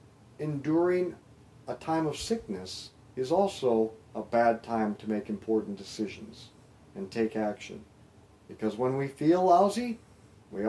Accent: American